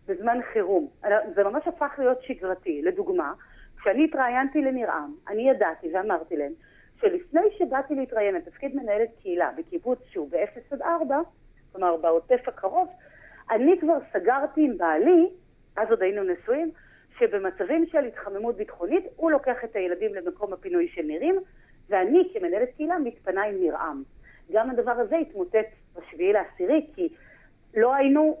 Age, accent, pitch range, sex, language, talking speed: 40-59, native, 210-340 Hz, female, Hebrew, 135 wpm